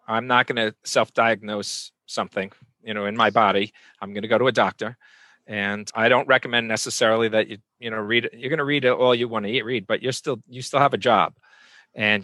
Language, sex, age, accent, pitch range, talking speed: English, male, 40-59, American, 110-125 Hz, 235 wpm